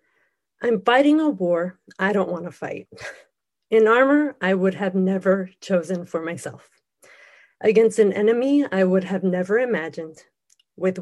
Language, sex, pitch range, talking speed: English, female, 180-225 Hz, 140 wpm